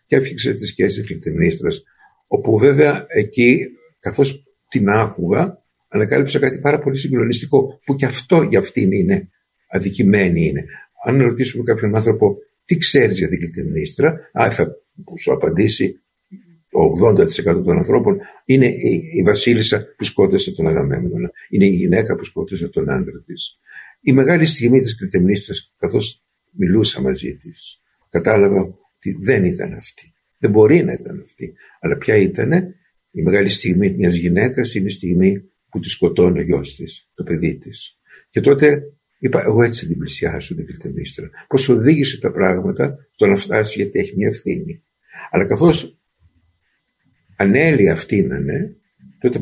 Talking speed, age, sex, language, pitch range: 145 wpm, 60-79, male, Greek, 110-150 Hz